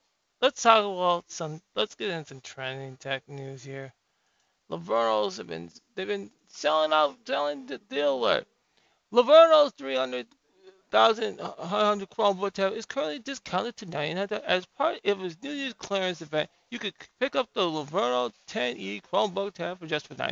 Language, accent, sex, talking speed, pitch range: English, American, male, 150 wpm, 155-195 Hz